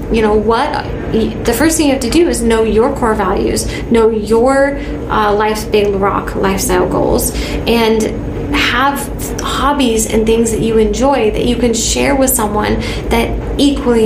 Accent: American